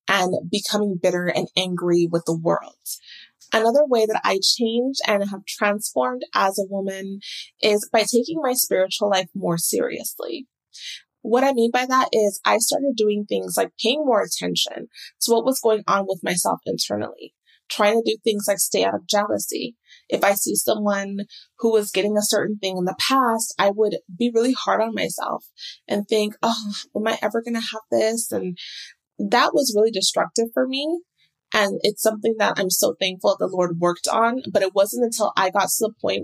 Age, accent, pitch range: 20-39, American, 195-230 Hz